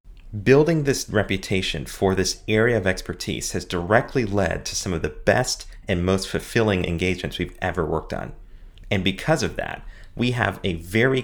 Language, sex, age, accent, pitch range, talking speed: English, male, 30-49, American, 90-110 Hz, 170 wpm